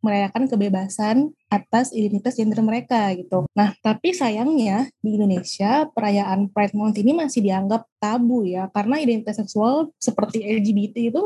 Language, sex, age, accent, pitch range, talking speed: Indonesian, female, 20-39, native, 215-255 Hz, 140 wpm